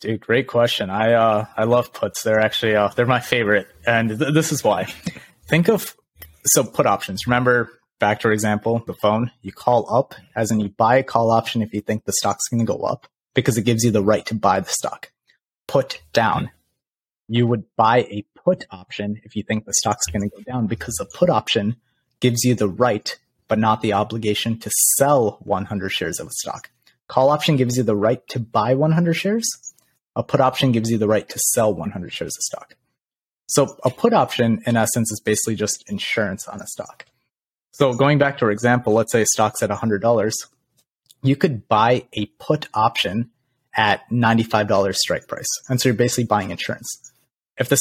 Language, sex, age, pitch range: English, male, 30-49, 105-125 Hz